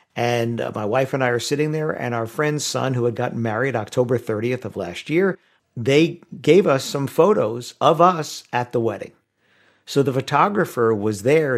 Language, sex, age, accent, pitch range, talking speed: English, male, 50-69, American, 115-145 Hz, 190 wpm